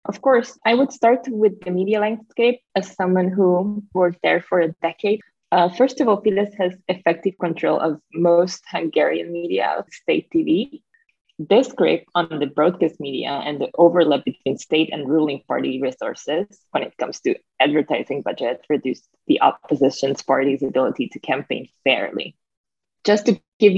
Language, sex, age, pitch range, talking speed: English, female, 20-39, 145-195 Hz, 160 wpm